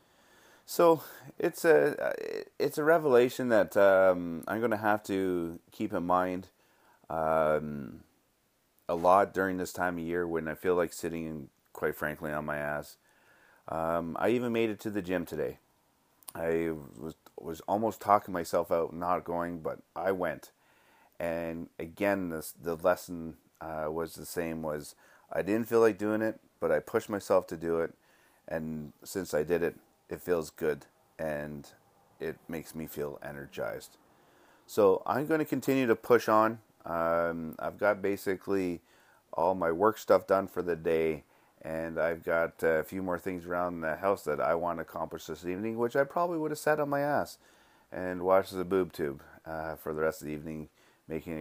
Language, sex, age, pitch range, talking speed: English, male, 30-49, 80-105 Hz, 175 wpm